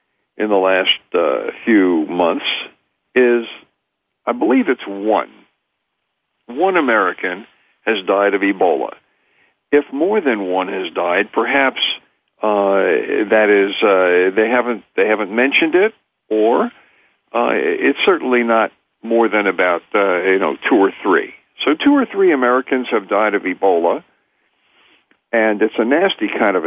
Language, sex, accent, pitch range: English, male, American, 105-155 Hz